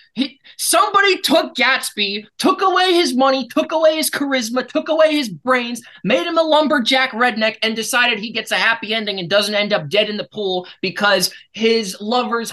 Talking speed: 185 wpm